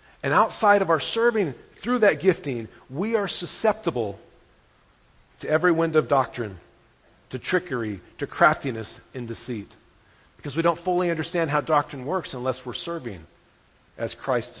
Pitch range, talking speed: 120-160 Hz, 145 wpm